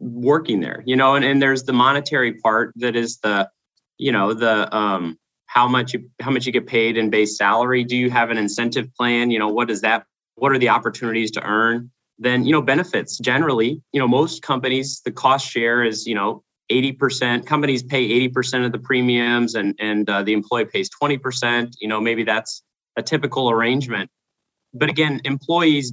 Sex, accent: male, American